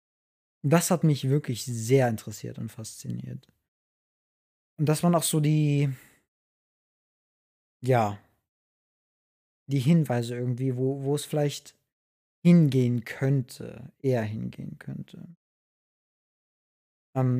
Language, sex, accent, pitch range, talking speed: German, male, German, 115-140 Hz, 95 wpm